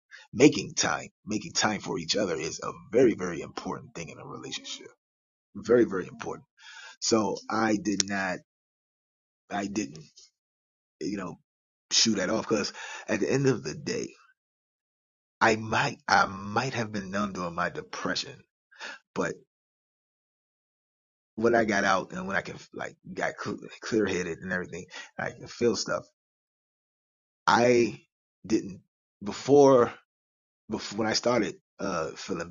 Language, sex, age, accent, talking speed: English, male, 20-39, American, 140 wpm